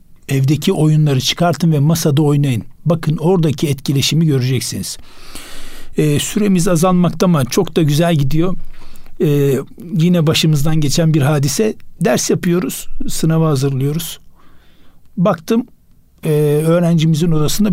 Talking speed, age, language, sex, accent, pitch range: 110 wpm, 60-79, Turkish, male, native, 140-175 Hz